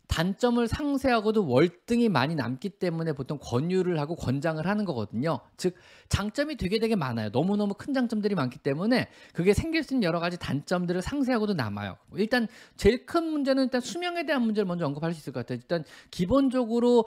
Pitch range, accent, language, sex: 140-220 Hz, native, Korean, male